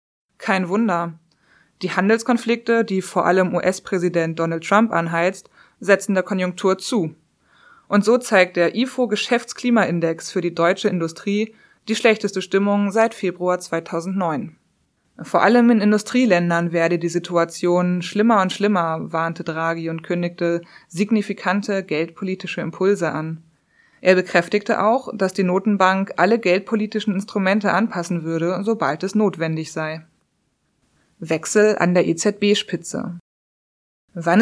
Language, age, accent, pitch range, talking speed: German, 20-39, German, 170-210 Hz, 120 wpm